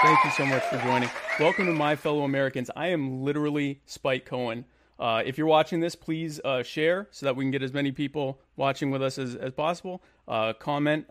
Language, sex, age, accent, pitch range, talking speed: English, male, 30-49, American, 125-150 Hz, 215 wpm